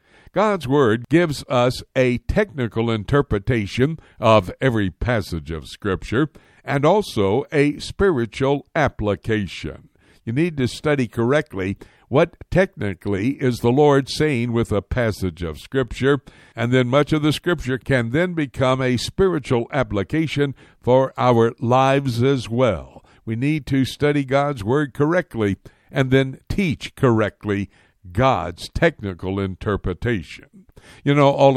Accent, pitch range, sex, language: American, 110-145 Hz, male, English